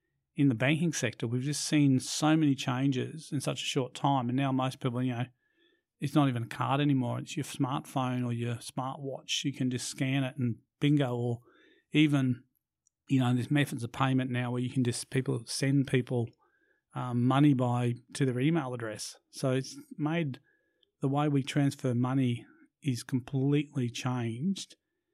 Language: English